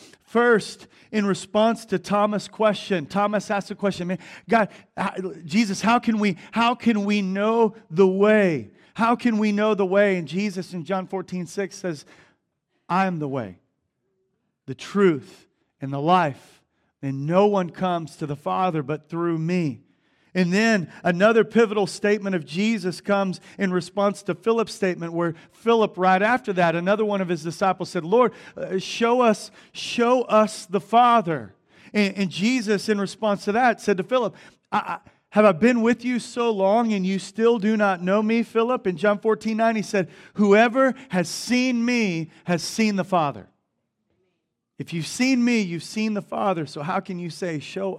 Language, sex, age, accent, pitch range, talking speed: English, male, 40-59, American, 165-210 Hz, 175 wpm